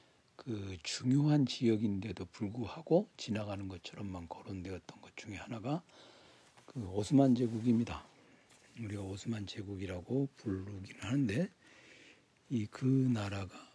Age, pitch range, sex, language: 60-79, 100-130 Hz, male, Korean